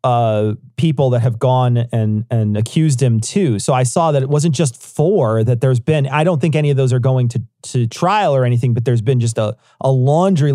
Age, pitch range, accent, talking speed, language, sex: 40-59, 125-165 Hz, American, 235 wpm, English, male